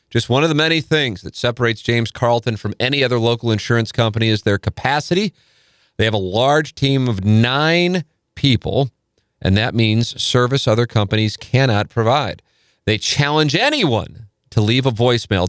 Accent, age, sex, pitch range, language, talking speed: American, 40-59, male, 100-130 Hz, English, 165 wpm